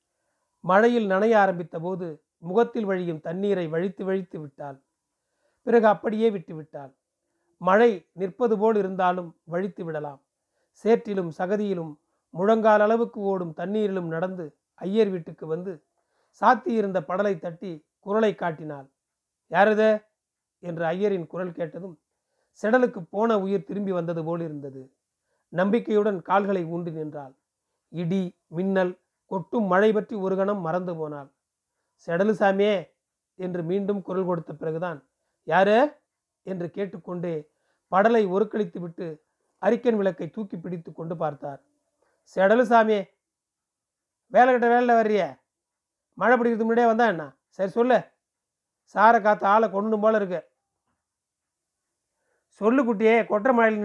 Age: 40-59